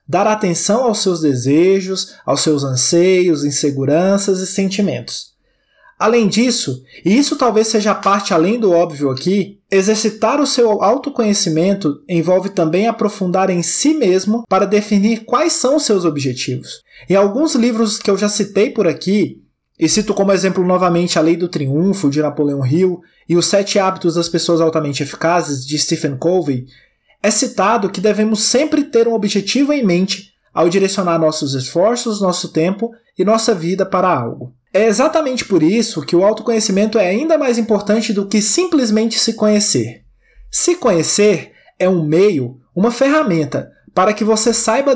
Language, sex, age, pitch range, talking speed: Portuguese, male, 20-39, 170-225 Hz, 160 wpm